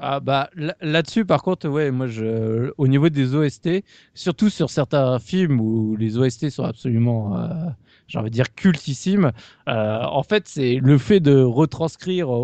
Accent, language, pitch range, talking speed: French, French, 120-165 Hz, 165 wpm